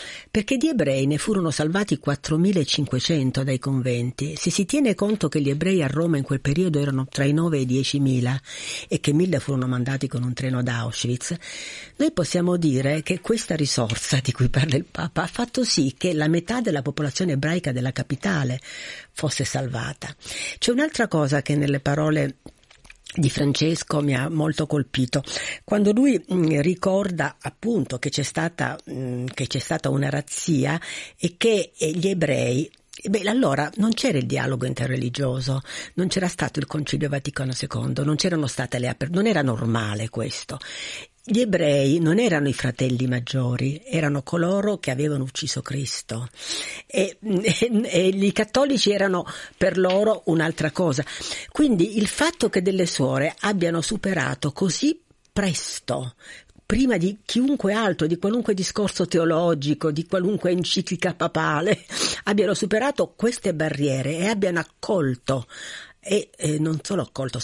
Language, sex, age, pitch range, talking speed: Italian, female, 50-69, 135-190 Hz, 150 wpm